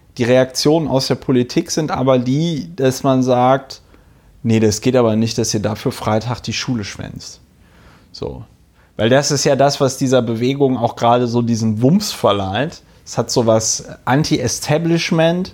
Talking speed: 160 wpm